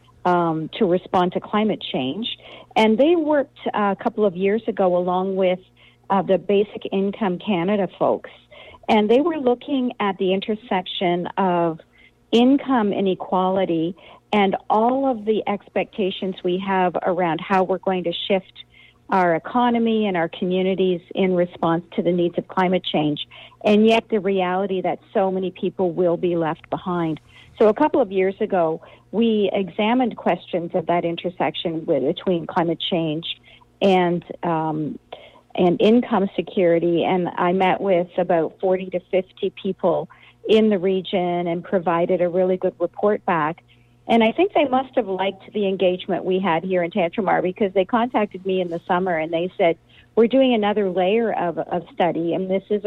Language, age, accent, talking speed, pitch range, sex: English, 50-69, American, 160 wpm, 175-210 Hz, female